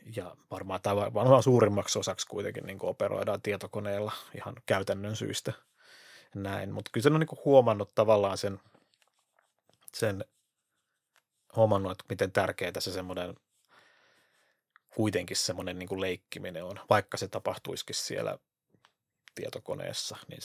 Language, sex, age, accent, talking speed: Finnish, male, 30-49, native, 115 wpm